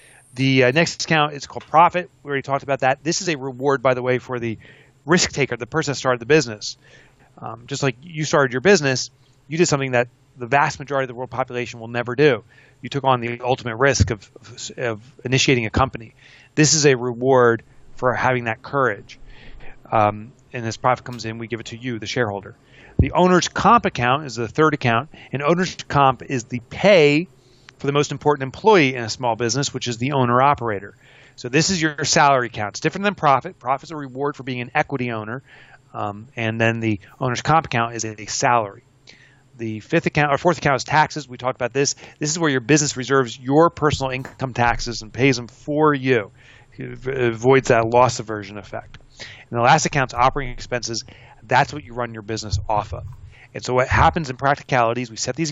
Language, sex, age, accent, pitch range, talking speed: English, male, 30-49, American, 120-145 Hz, 210 wpm